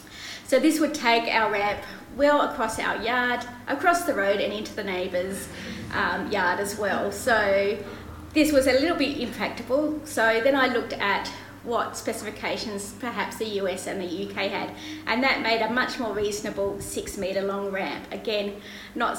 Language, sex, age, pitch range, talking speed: English, female, 30-49, 200-265 Hz, 170 wpm